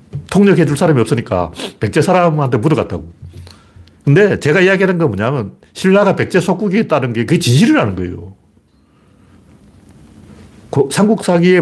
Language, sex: Korean, male